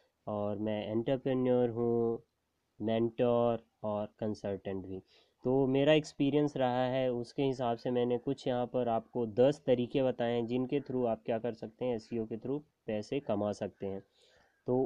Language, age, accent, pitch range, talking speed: Hindi, 20-39, native, 120-150 Hz, 160 wpm